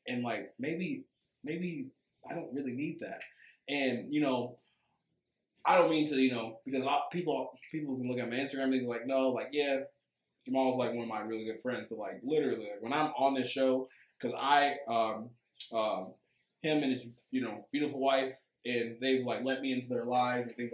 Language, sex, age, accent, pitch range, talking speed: English, male, 20-39, American, 120-135 Hz, 200 wpm